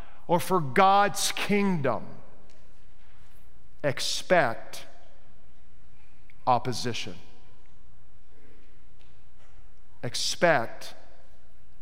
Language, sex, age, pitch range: English, male, 50-69, 130-170 Hz